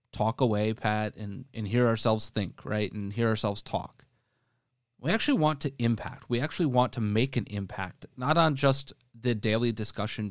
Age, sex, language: 30-49, male, English